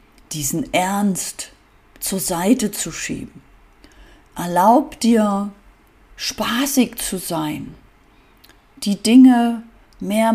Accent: German